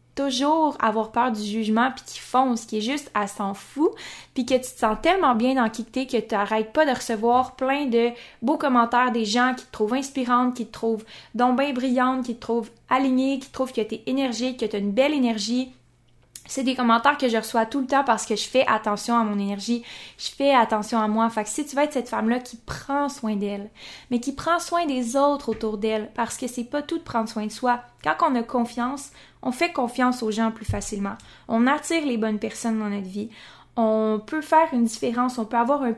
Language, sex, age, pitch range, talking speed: French, female, 20-39, 220-260 Hz, 230 wpm